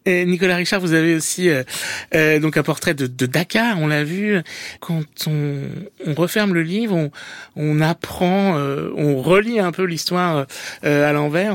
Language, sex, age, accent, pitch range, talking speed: French, male, 60-79, French, 150-190 Hz, 180 wpm